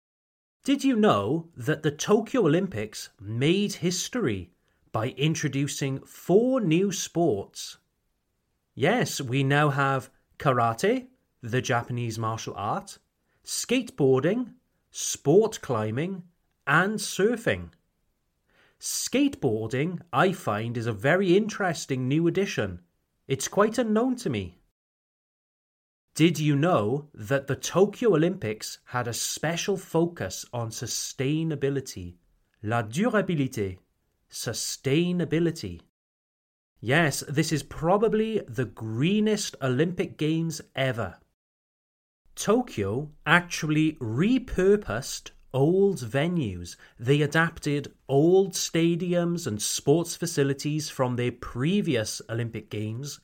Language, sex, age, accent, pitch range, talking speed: French, male, 30-49, British, 120-180 Hz, 95 wpm